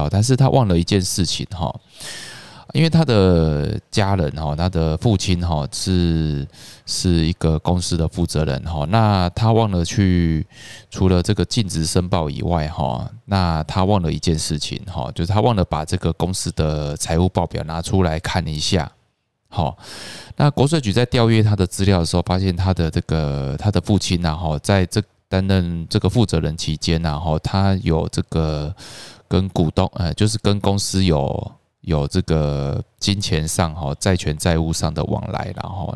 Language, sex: Chinese, male